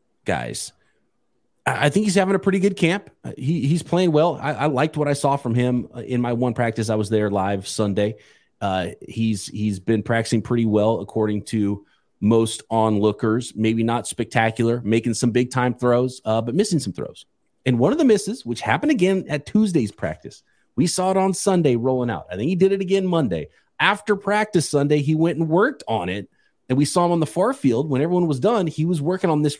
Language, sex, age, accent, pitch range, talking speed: English, male, 30-49, American, 115-165 Hz, 210 wpm